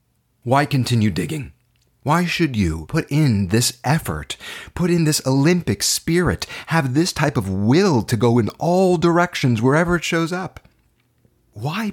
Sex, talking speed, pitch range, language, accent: male, 150 wpm, 105-145 Hz, English, American